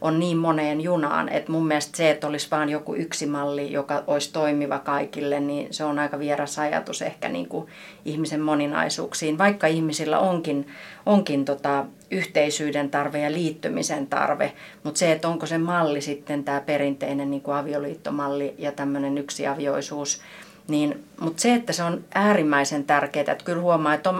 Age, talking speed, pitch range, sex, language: 30-49, 165 wpm, 145-160 Hz, female, Finnish